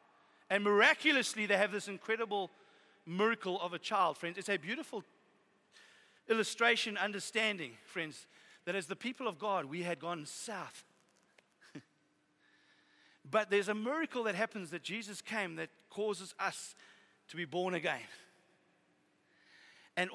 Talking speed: 130 wpm